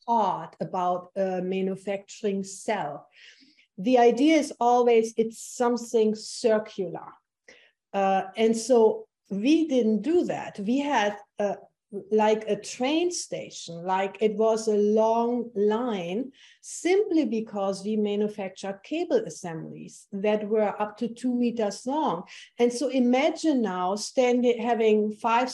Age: 50-69